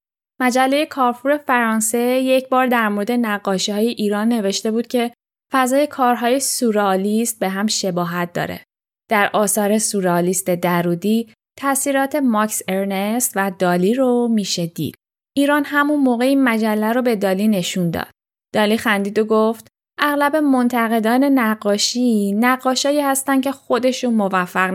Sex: female